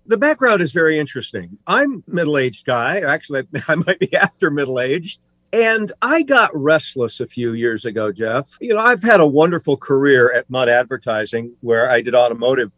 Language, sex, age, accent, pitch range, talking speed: English, male, 50-69, American, 120-170 Hz, 180 wpm